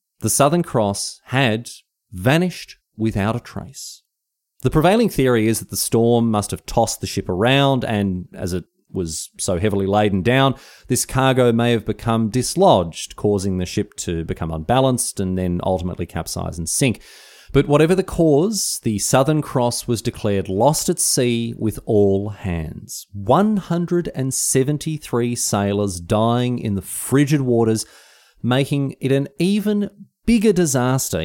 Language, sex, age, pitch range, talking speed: English, male, 30-49, 100-135 Hz, 145 wpm